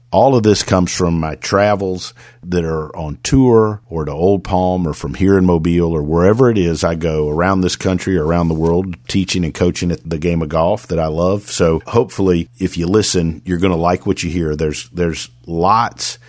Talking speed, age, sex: 215 wpm, 50-69, male